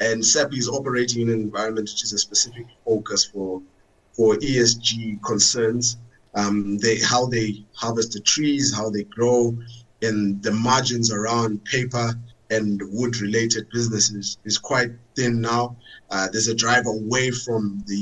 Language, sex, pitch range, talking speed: English, male, 110-120 Hz, 145 wpm